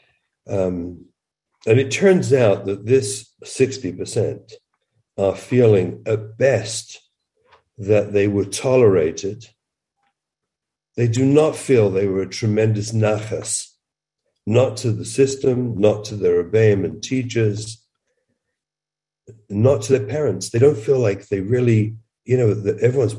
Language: English